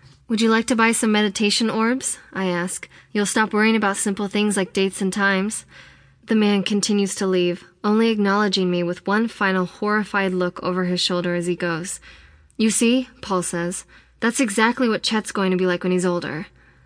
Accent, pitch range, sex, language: American, 180-210 Hz, female, English